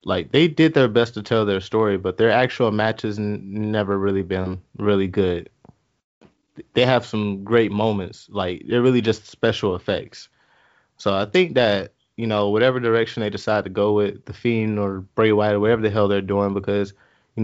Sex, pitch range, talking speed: male, 100-120 Hz, 190 wpm